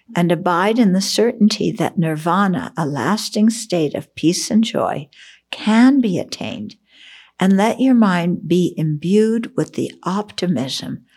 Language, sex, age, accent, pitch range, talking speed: English, female, 60-79, American, 160-215 Hz, 140 wpm